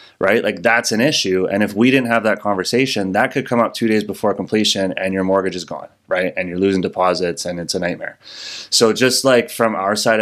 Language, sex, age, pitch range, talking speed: English, male, 20-39, 95-110 Hz, 235 wpm